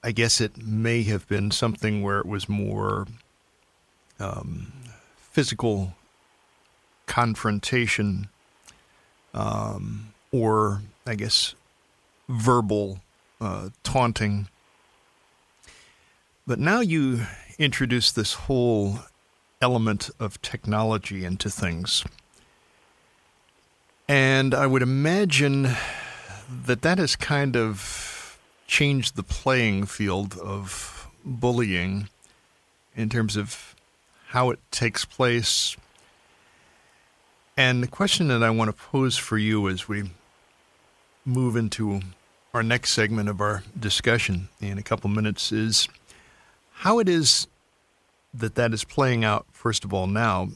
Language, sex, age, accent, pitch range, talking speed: English, male, 50-69, American, 100-125 Hz, 110 wpm